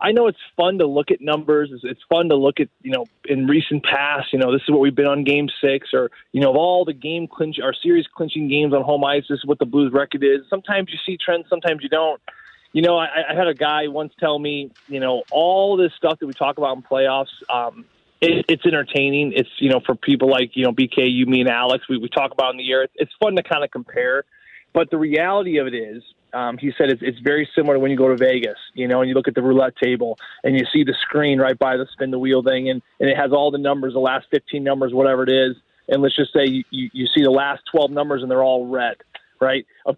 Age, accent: 20-39, American